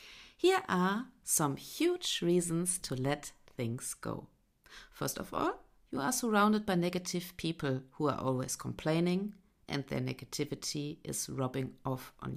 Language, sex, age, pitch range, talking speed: English, female, 50-69, 120-170 Hz, 140 wpm